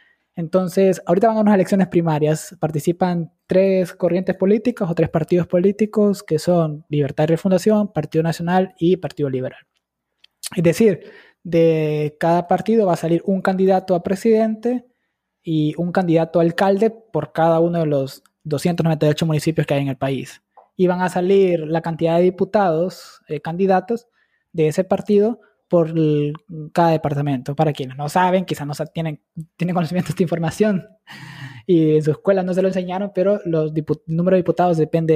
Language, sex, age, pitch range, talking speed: Spanish, male, 20-39, 155-190 Hz, 170 wpm